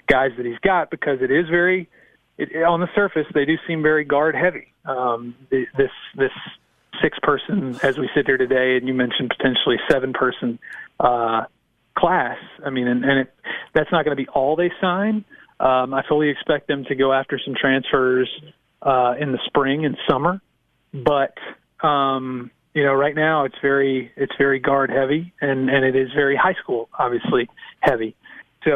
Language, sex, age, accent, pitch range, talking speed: English, male, 40-59, American, 130-150 Hz, 175 wpm